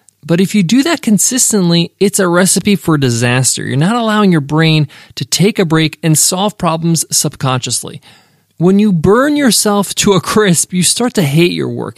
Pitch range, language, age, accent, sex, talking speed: 150-195 Hz, English, 20-39, American, male, 185 wpm